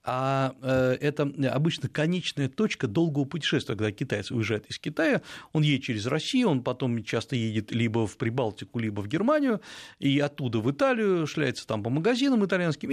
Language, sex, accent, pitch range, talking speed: Russian, male, native, 115-165 Hz, 160 wpm